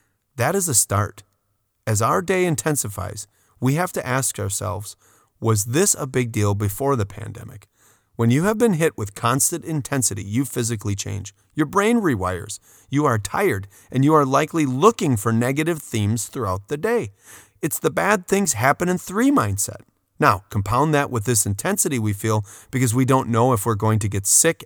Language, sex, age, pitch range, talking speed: English, male, 30-49, 105-145 Hz, 185 wpm